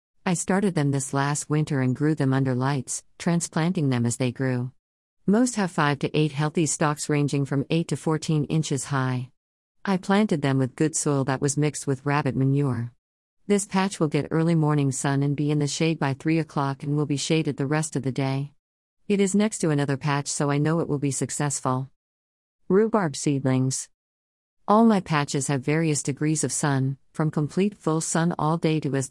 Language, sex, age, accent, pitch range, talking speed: English, female, 50-69, American, 135-165 Hz, 200 wpm